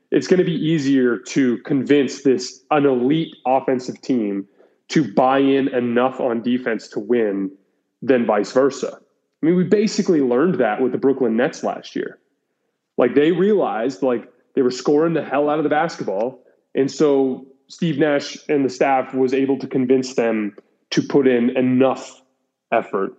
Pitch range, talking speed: 120-140 Hz, 165 wpm